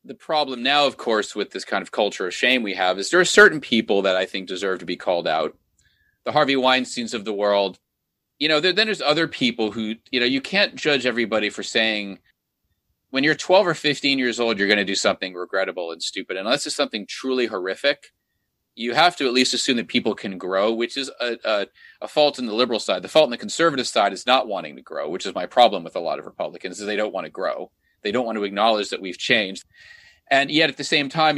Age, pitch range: 30-49, 105-140 Hz